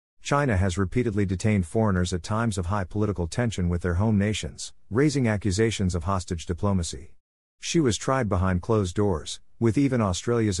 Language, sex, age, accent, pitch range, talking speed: English, male, 50-69, American, 90-110 Hz, 165 wpm